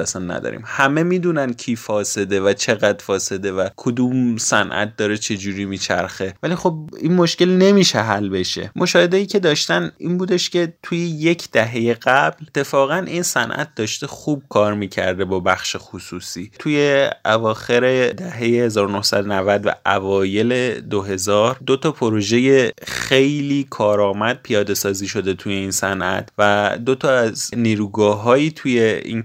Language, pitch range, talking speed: Persian, 105-140 Hz, 140 wpm